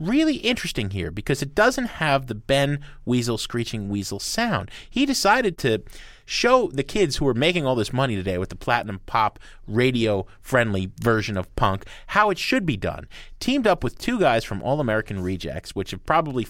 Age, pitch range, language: 30-49, 105-155 Hz, English